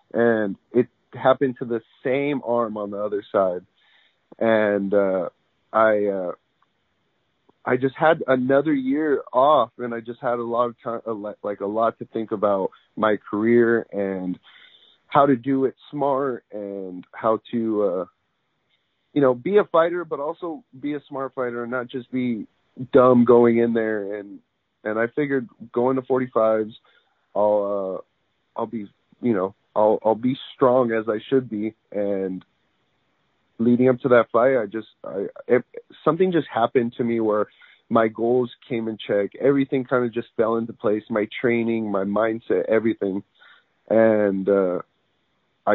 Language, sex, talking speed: English, male, 160 wpm